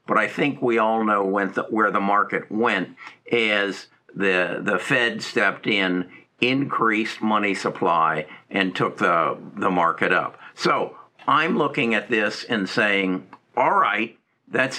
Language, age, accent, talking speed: English, 60-79, American, 150 wpm